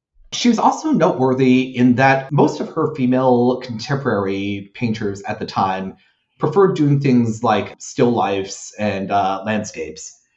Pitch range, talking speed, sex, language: 105-130 Hz, 140 wpm, male, English